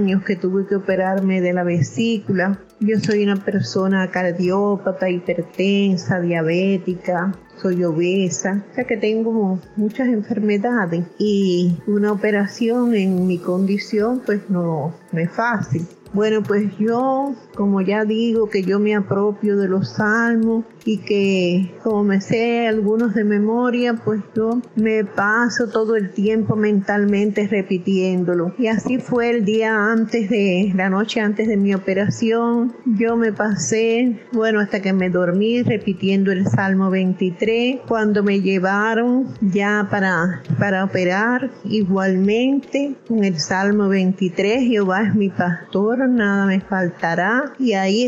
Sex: female